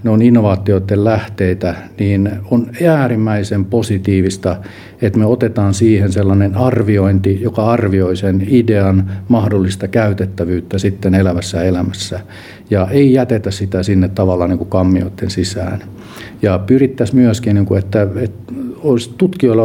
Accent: native